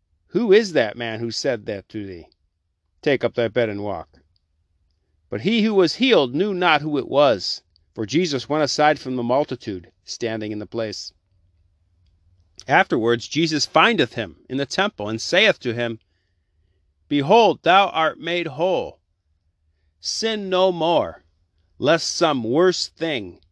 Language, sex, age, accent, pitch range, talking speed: English, male, 40-59, American, 85-130 Hz, 150 wpm